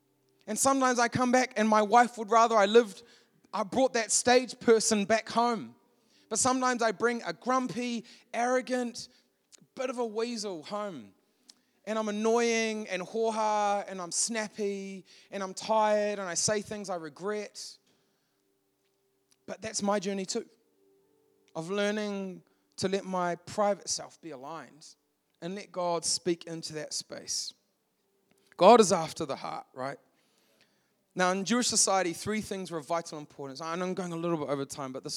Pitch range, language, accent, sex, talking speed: 170-230 Hz, English, Australian, male, 165 wpm